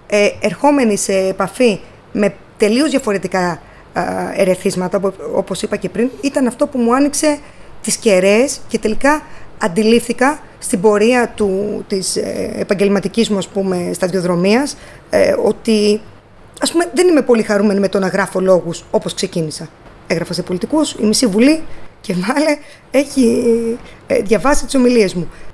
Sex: female